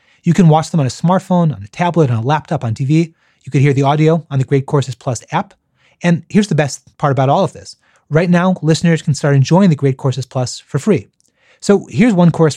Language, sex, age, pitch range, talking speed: English, male, 30-49, 135-165 Hz, 245 wpm